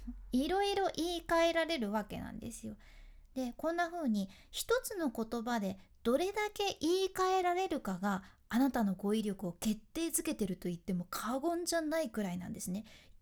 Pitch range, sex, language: 210-320 Hz, female, Japanese